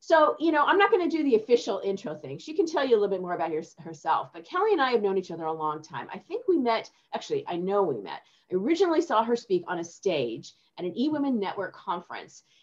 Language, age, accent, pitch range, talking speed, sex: English, 40-59, American, 185-285 Hz, 260 wpm, female